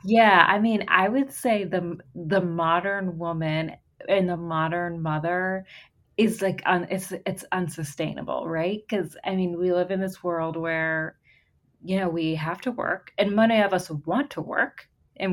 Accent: American